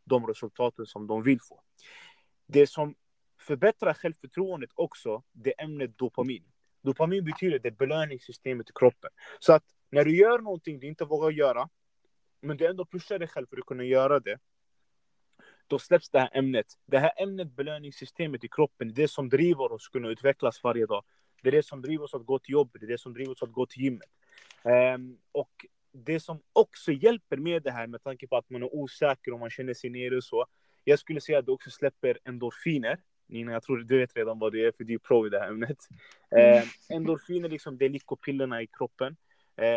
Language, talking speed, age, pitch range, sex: Swedish, 215 wpm, 30-49, 125-170 Hz, male